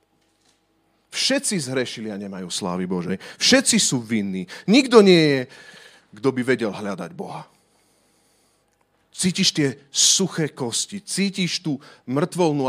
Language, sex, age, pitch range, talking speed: Slovak, male, 40-59, 160-230 Hz, 115 wpm